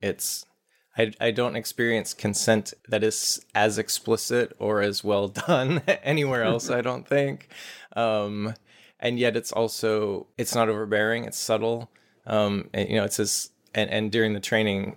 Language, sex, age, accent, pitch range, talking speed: English, male, 20-39, American, 100-115 Hz, 160 wpm